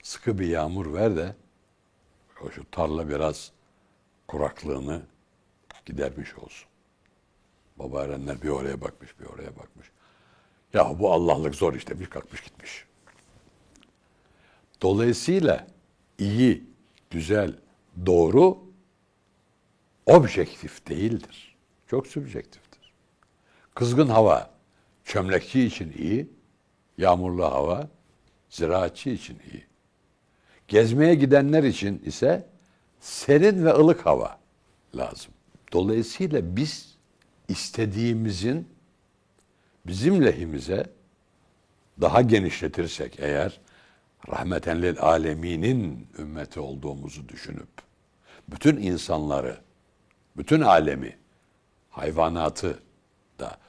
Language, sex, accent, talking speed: Turkish, male, native, 85 wpm